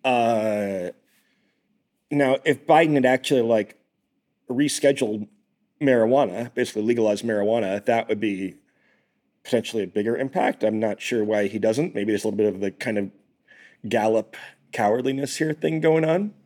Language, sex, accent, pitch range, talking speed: English, male, American, 110-135 Hz, 145 wpm